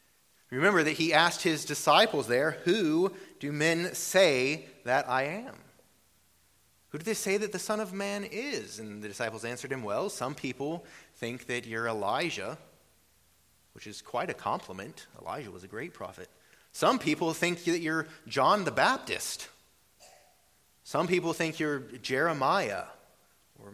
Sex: male